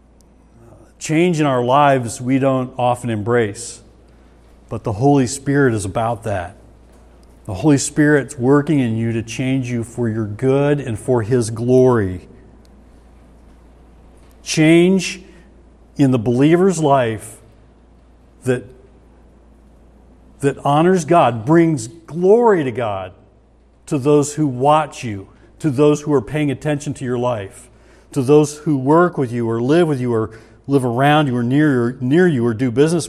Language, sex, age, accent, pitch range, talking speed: English, male, 50-69, American, 110-150 Hz, 140 wpm